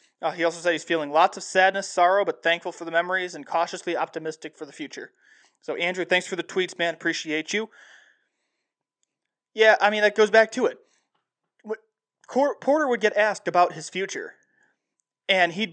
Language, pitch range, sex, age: English, 160-205 Hz, male, 20-39